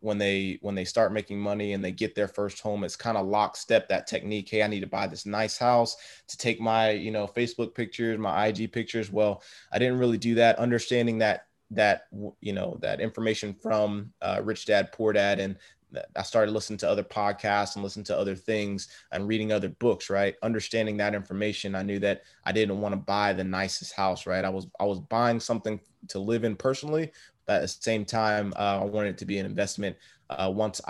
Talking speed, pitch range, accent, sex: 220 wpm, 100-115 Hz, American, male